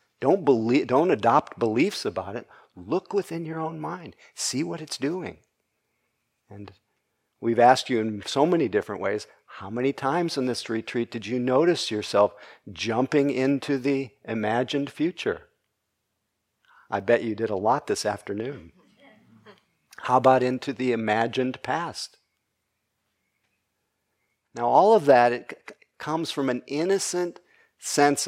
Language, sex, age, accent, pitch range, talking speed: English, male, 50-69, American, 115-140 Hz, 135 wpm